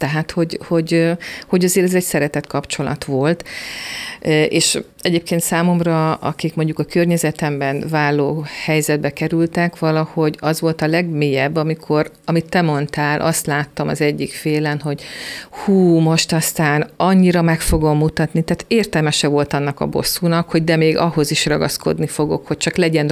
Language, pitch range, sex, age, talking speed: Hungarian, 150-170 Hz, female, 50-69, 150 wpm